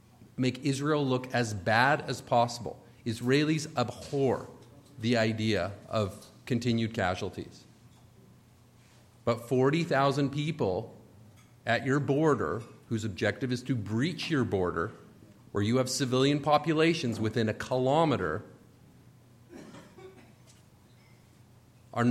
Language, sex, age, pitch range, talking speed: English, male, 40-59, 110-135 Hz, 100 wpm